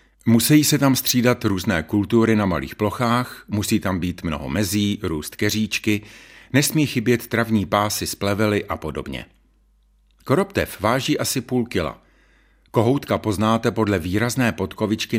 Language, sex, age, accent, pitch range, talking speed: Czech, male, 50-69, native, 95-120 Hz, 130 wpm